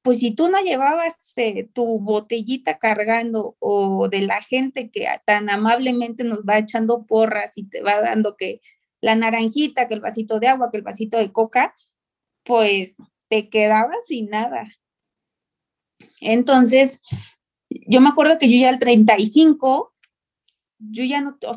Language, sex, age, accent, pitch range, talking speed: Spanish, female, 30-49, Mexican, 215-260 Hz, 155 wpm